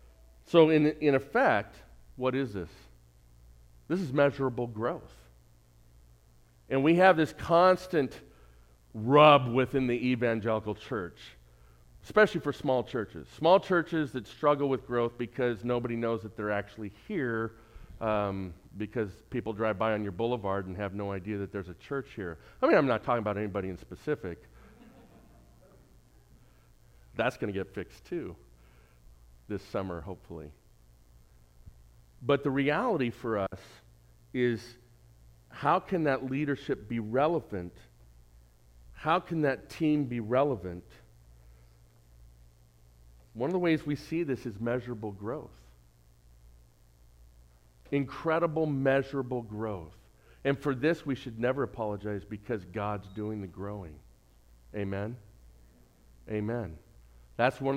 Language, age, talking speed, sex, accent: English, 40-59, 125 wpm, male, American